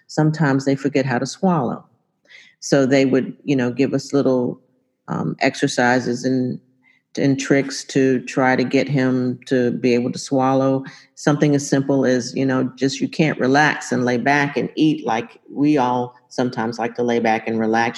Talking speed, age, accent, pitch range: 180 wpm, 40-59, American, 120-140 Hz